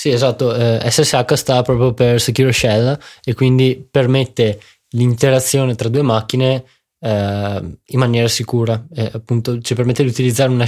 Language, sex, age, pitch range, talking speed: Italian, male, 20-39, 120-155 Hz, 145 wpm